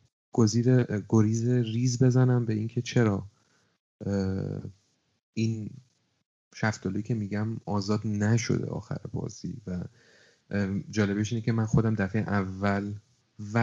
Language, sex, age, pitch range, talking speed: Persian, male, 30-49, 100-120 Hz, 100 wpm